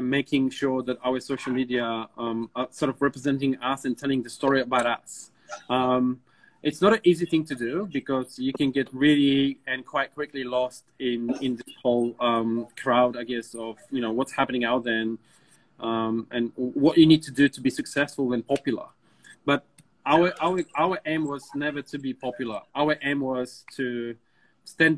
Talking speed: 185 wpm